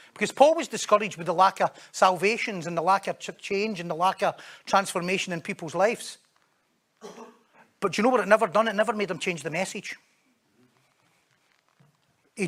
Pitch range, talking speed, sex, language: 155-185 Hz, 185 wpm, male, English